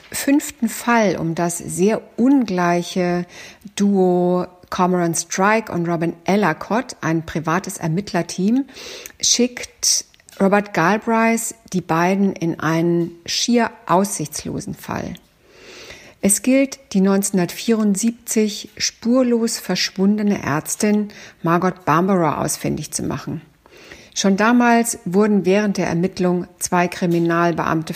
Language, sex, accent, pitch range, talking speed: German, female, German, 175-215 Hz, 95 wpm